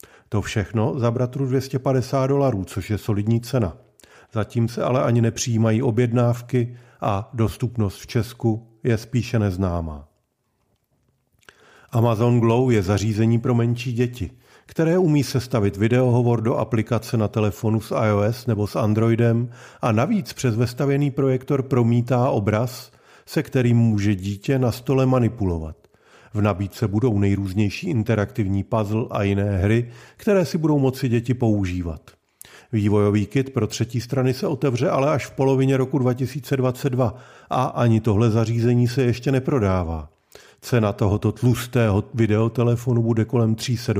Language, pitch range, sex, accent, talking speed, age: Czech, 110-130 Hz, male, native, 135 wpm, 40-59